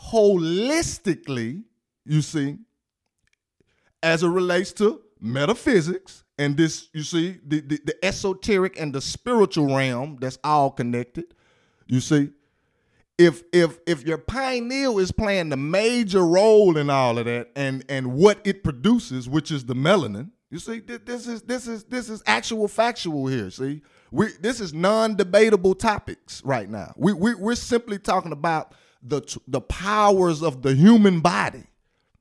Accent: American